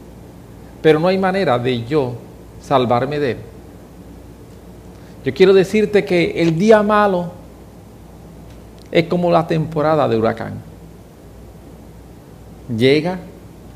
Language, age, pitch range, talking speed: English, 40-59, 110-170 Hz, 100 wpm